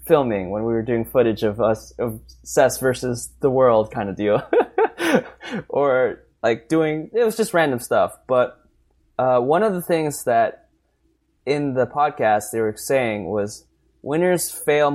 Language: English